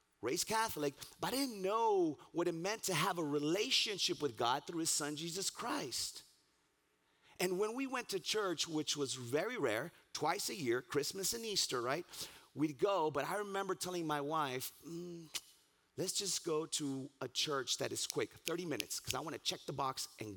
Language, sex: English, male